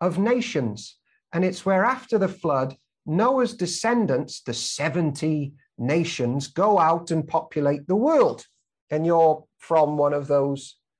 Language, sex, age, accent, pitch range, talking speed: English, male, 40-59, British, 145-200 Hz, 135 wpm